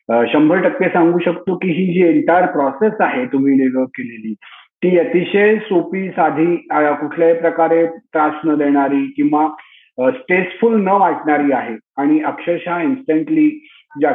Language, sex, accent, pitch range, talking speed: Marathi, male, native, 145-190 Hz, 130 wpm